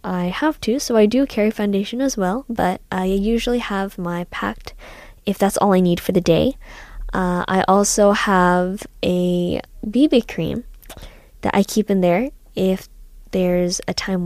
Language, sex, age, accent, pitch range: Korean, female, 10-29, American, 180-225 Hz